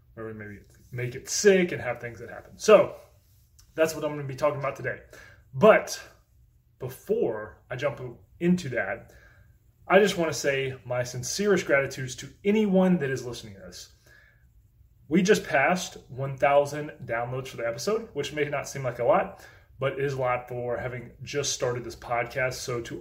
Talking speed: 175 wpm